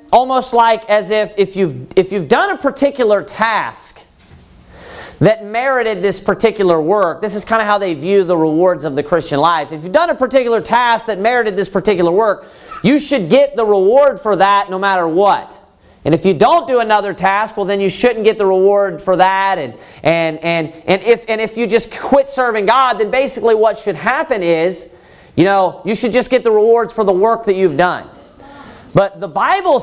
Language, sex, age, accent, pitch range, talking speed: English, male, 40-59, American, 190-250 Hz, 205 wpm